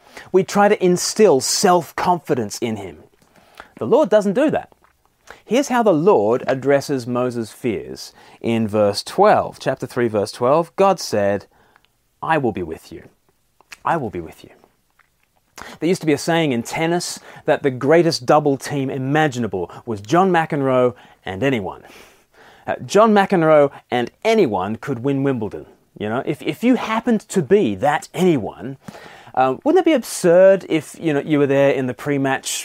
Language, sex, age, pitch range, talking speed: English, male, 30-49, 130-210 Hz, 165 wpm